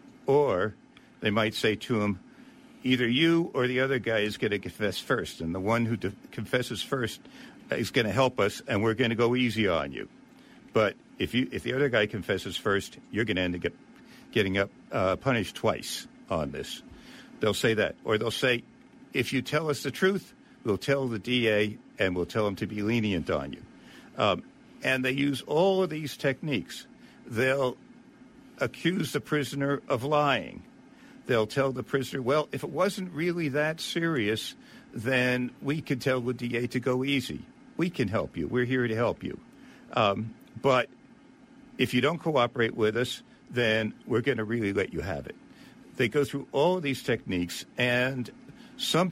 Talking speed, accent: 185 wpm, American